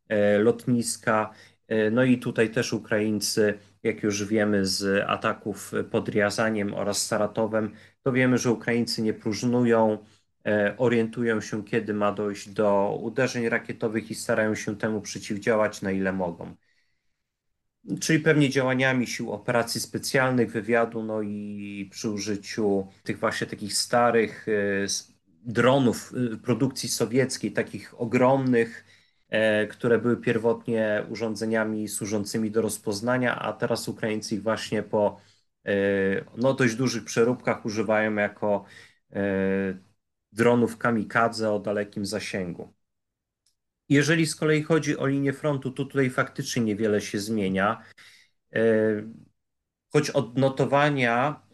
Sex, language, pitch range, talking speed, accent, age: male, Polish, 105-120 Hz, 110 wpm, native, 30-49